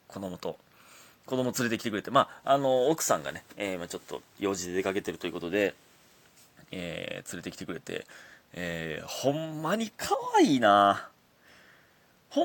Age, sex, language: 30-49, male, Japanese